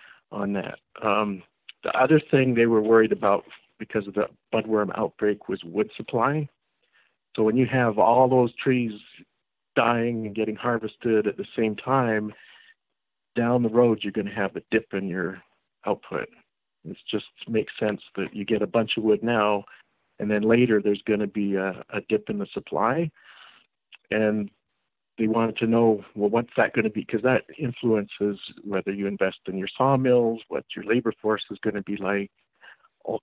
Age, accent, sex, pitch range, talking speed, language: 50-69, American, male, 105-115 Hz, 180 wpm, English